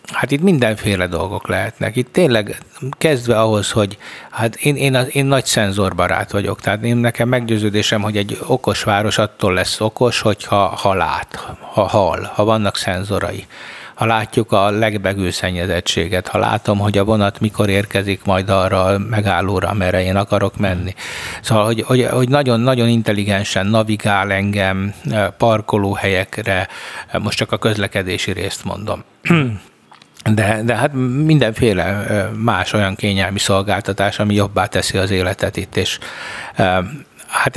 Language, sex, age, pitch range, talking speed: Hungarian, male, 60-79, 95-115 Hz, 135 wpm